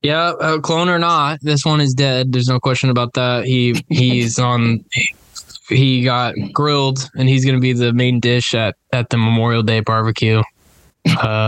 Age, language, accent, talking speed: 10-29, English, American, 180 wpm